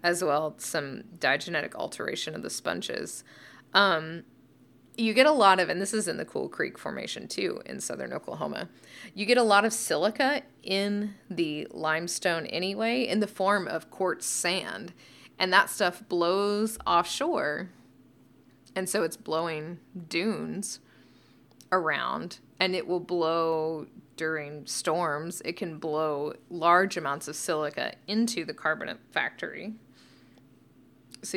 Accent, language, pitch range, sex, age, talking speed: American, English, 155-200 Hz, female, 20-39, 135 wpm